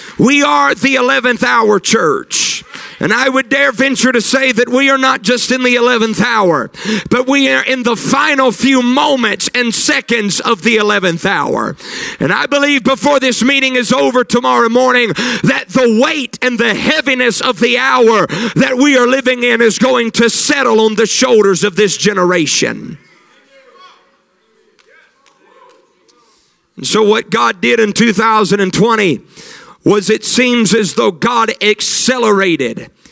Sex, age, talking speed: male, 50-69, 150 wpm